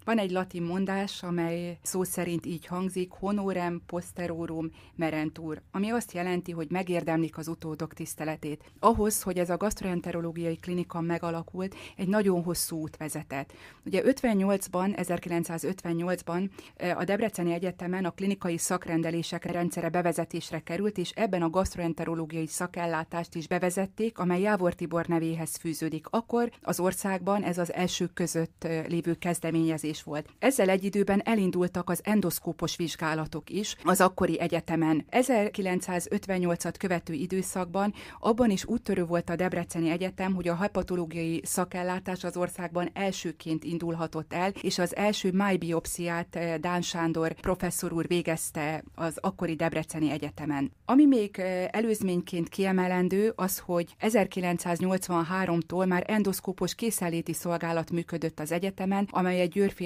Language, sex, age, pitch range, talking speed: Hungarian, female, 30-49, 165-190 Hz, 125 wpm